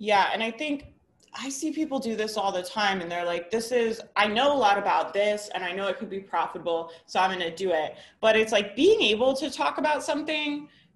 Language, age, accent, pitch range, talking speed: English, 20-39, American, 175-230 Hz, 245 wpm